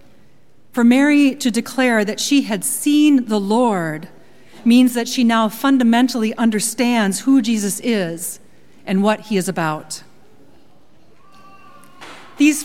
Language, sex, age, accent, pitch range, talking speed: English, female, 40-59, American, 200-245 Hz, 120 wpm